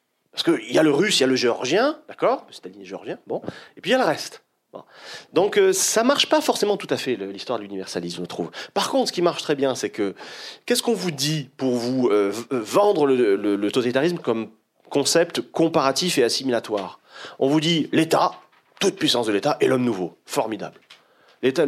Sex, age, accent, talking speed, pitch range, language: male, 30-49, French, 210 wpm, 130-205 Hz, French